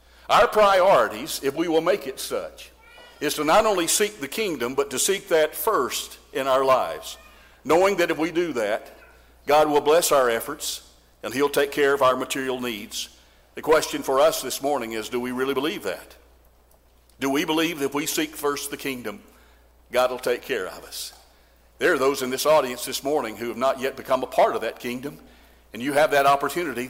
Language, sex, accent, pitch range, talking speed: English, male, American, 120-150 Hz, 210 wpm